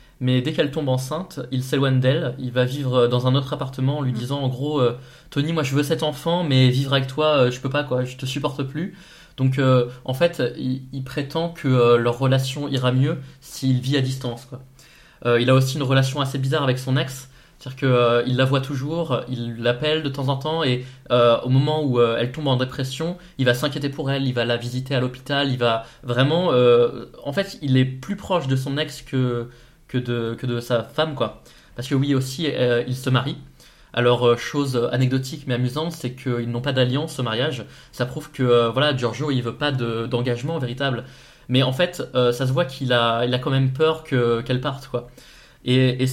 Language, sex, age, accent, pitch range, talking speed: French, male, 20-39, French, 125-145 Hz, 230 wpm